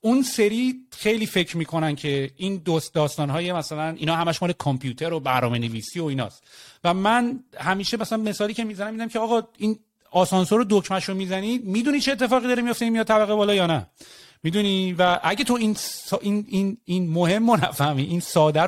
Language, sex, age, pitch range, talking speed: English, male, 30-49, 150-200 Hz, 195 wpm